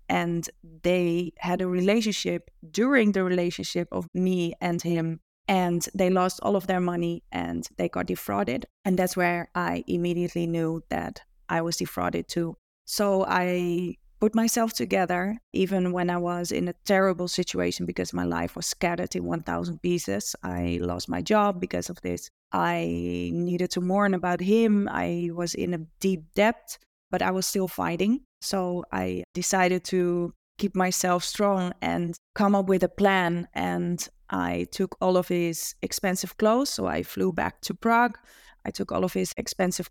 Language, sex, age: English, female, 20-39